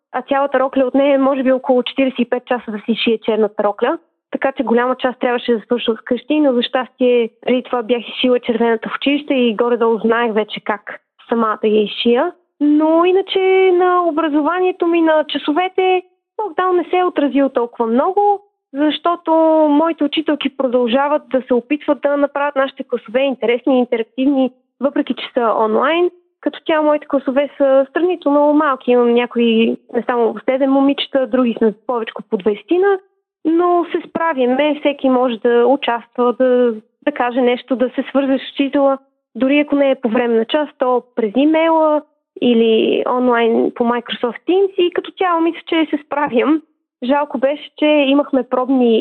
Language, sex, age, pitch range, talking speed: Bulgarian, female, 20-39, 245-310 Hz, 170 wpm